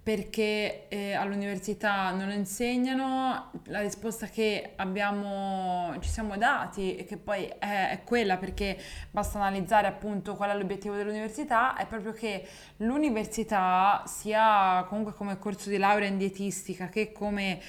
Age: 20-39